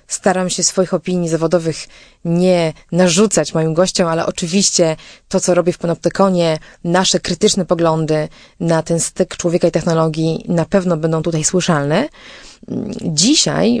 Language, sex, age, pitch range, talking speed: Polish, female, 20-39, 165-200 Hz, 135 wpm